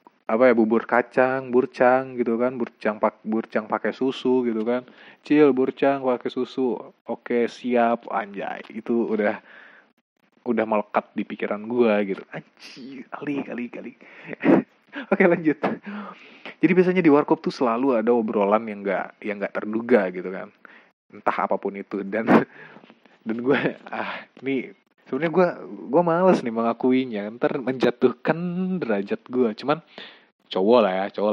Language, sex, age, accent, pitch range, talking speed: Indonesian, male, 20-39, native, 115-135 Hz, 140 wpm